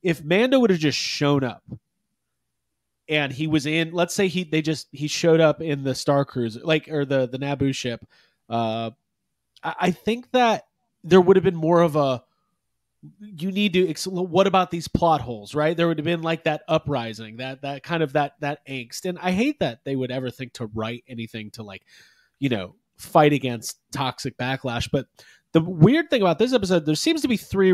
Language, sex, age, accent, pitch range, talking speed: English, male, 30-49, American, 140-185 Hz, 205 wpm